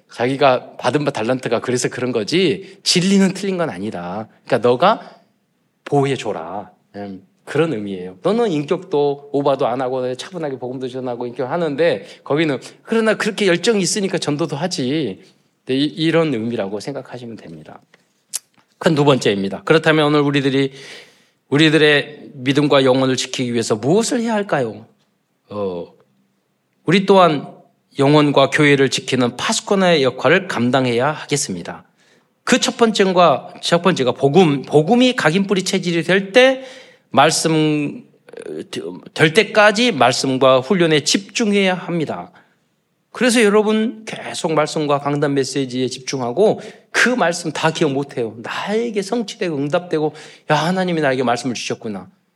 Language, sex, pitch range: Korean, male, 130-195 Hz